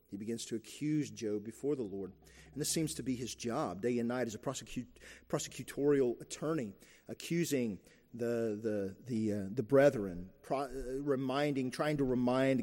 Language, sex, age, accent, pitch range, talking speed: English, male, 40-59, American, 125-180 Hz, 145 wpm